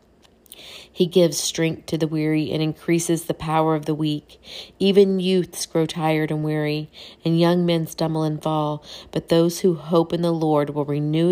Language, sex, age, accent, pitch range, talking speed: English, female, 40-59, American, 155-175 Hz, 180 wpm